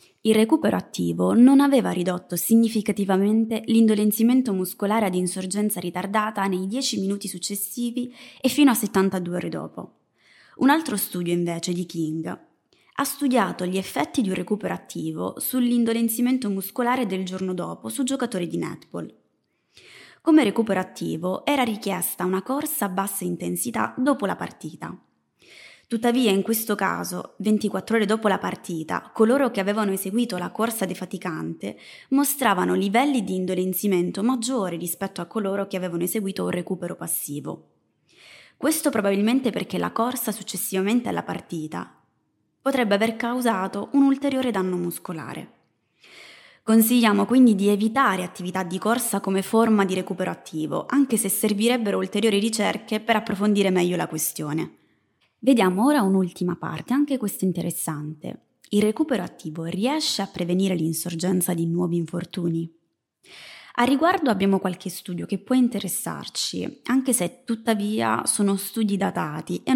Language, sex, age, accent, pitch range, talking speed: Italian, female, 20-39, native, 180-235 Hz, 135 wpm